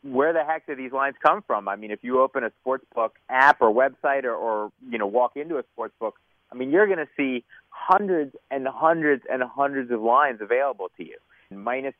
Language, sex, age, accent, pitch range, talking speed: English, male, 30-49, American, 120-155 Hz, 215 wpm